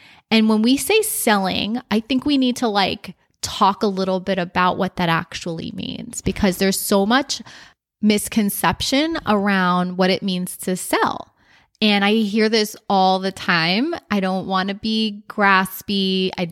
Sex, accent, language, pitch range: female, American, English, 190-225 Hz